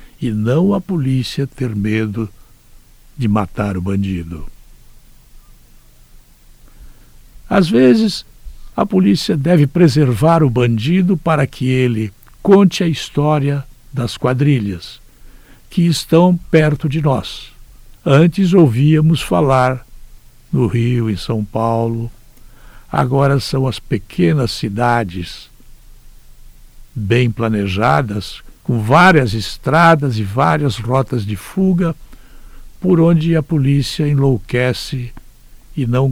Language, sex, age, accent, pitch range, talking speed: Portuguese, male, 60-79, Brazilian, 105-140 Hz, 100 wpm